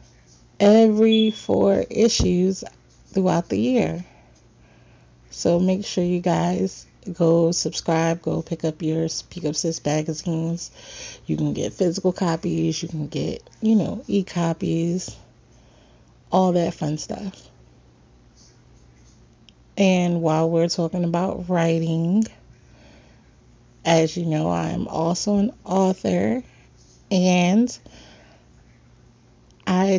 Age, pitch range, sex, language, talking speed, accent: 30-49, 160-185 Hz, female, English, 100 wpm, American